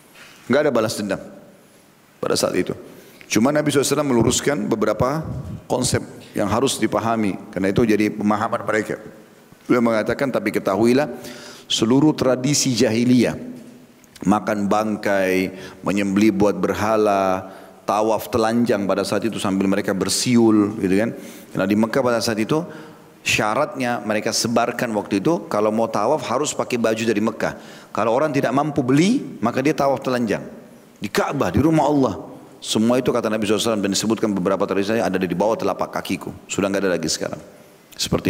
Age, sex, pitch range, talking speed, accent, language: 40-59, male, 100-130 Hz, 150 wpm, native, Indonesian